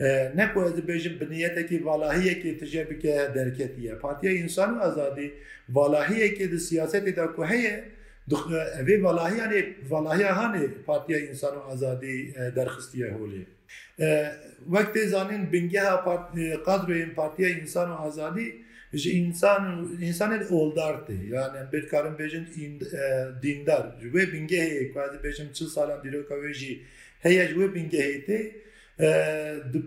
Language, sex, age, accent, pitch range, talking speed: Turkish, male, 50-69, native, 140-175 Hz, 85 wpm